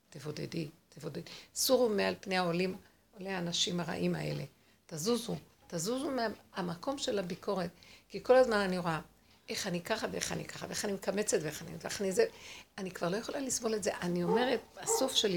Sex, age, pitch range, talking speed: female, 60-79, 195-260 Hz, 170 wpm